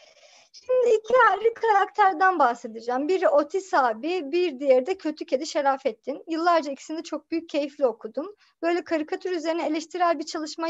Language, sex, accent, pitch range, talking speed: Turkish, male, native, 280-385 Hz, 145 wpm